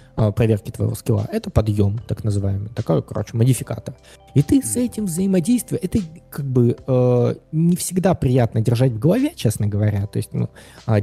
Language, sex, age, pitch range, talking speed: Russian, male, 20-39, 105-130 Hz, 170 wpm